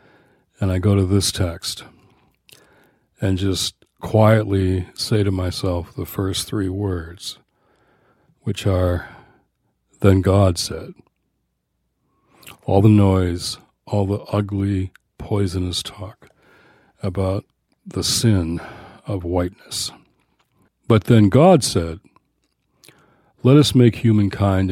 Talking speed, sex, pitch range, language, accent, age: 100 wpm, male, 90-110 Hz, English, American, 60-79